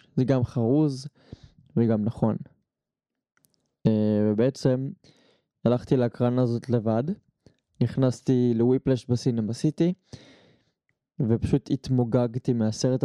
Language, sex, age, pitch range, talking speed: Hebrew, male, 20-39, 115-130 Hz, 80 wpm